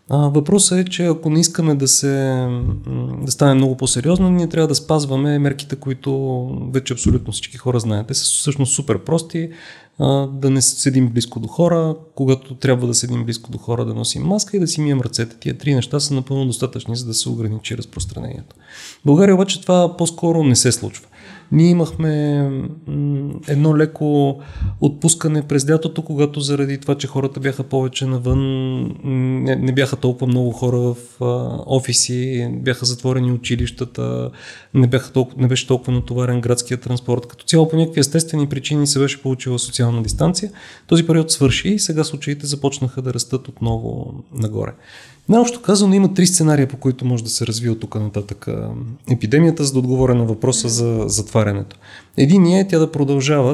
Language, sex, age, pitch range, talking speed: Bulgarian, male, 30-49, 120-150 Hz, 165 wpm